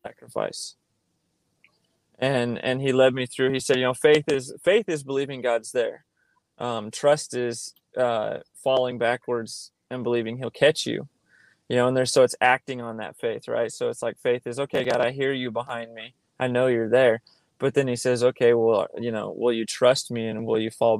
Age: 20-39